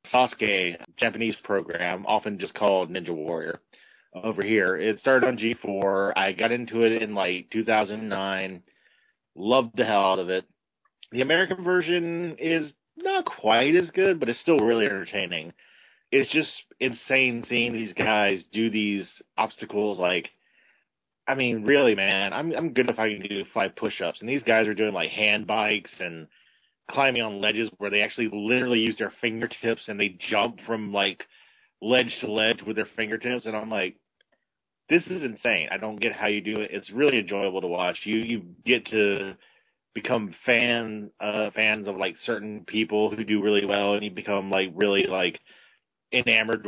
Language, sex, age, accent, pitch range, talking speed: English, male, 30-49, American, 100-120 Hz, 170 wpm